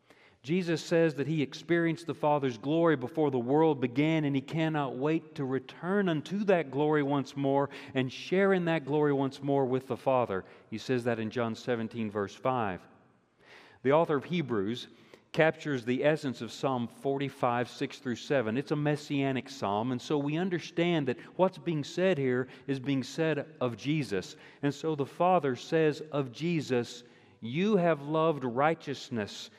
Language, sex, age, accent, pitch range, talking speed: English, male, 40-59, American, 115-150 Hz, 170 wpm